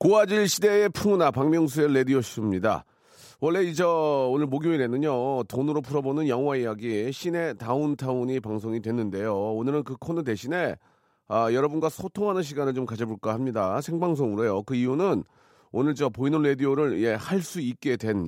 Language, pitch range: Korean, 115-155 Hz